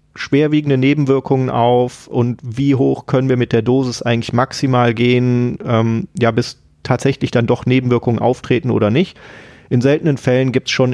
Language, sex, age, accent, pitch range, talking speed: German, male, 30-49, German, 115-135 Hz, 165 wpm